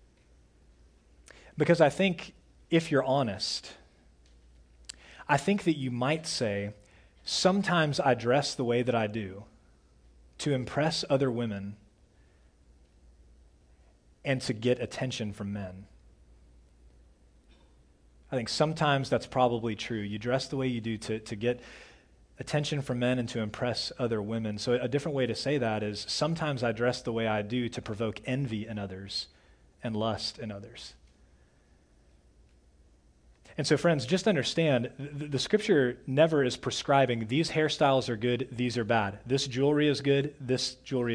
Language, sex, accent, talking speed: English, male, American, 145 wpm